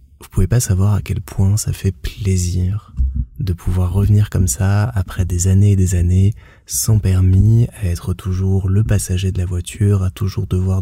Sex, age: male, 20-39